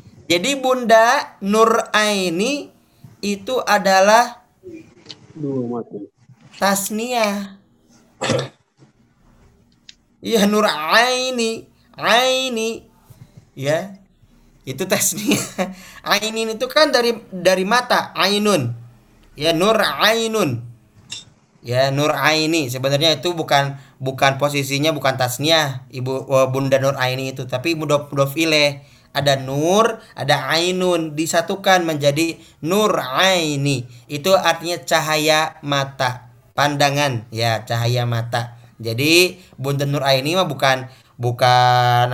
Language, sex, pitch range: Malay, male, 130-205 Hz